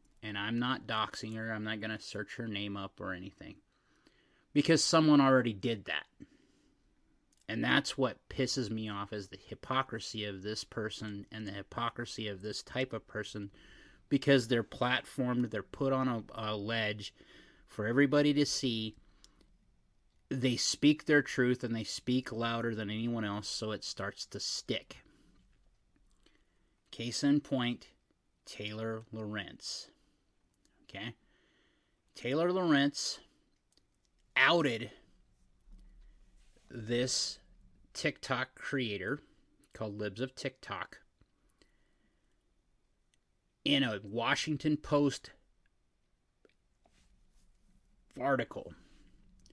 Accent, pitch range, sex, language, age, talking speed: American, 105-135 Hz, male, English, 30-49, 110 wpm